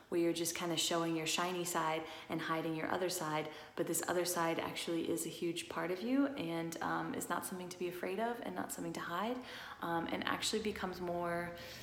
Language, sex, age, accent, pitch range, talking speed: English, female, 20-39, American, 165-210 Hz, 225 wpm